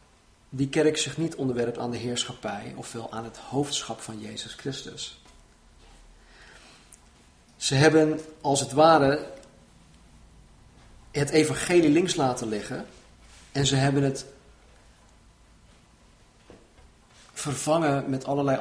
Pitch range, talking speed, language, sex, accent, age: 120-145 Hz, 105 wpm, Dutch, male, Dutch, 40-59